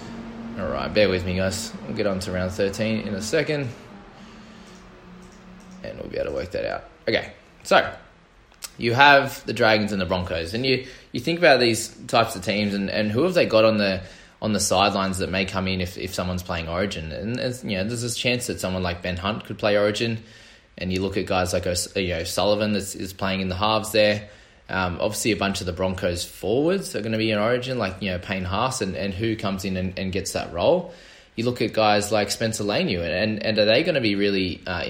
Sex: male